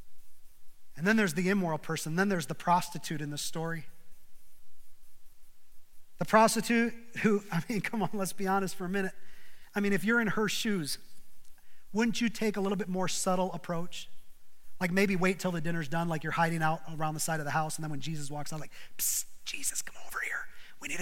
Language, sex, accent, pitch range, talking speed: English, male, American, 180-235 Hz, 205 wpm